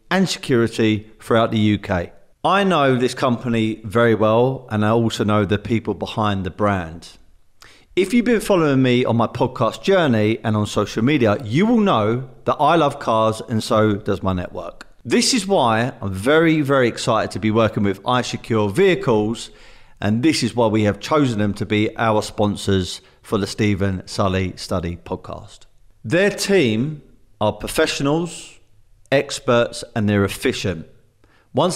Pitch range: 105-130 Hz